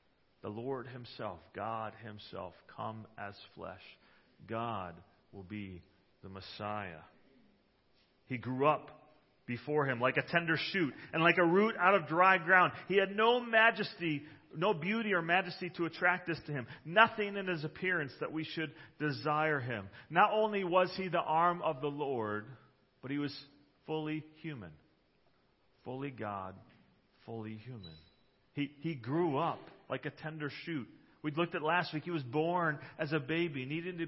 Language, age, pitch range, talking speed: English, 40-59, 120-170 Hz, 160 wpm